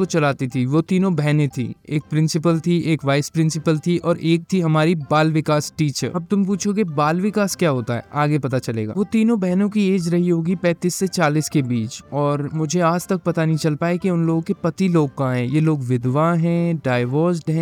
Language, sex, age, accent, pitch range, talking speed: Hindi, male, 20-39, native, 145-180 Hz, 110 wpm